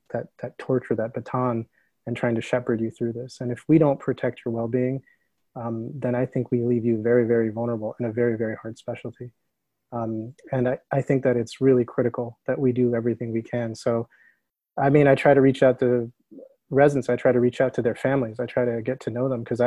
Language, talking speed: English, 230 wpm